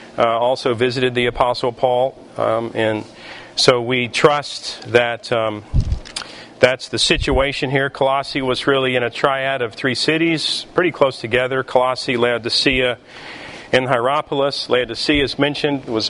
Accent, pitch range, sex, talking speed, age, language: American, 115-145 Hz, male, 140 wpm, 40-59, English